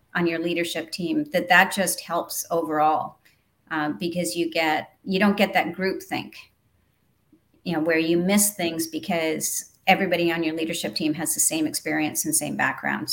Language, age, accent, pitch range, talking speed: English, 40-59, American, 165-195 Hz, 175 wpm